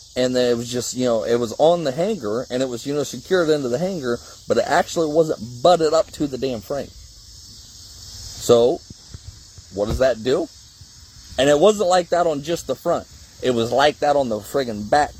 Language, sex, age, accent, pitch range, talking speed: English, male, 30-49, American, 110-160 Hz, 210 wpm